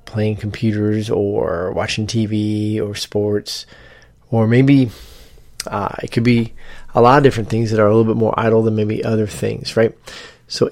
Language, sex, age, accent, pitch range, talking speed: English, male, 30-49, American, 110-130 Hz, 175 wpm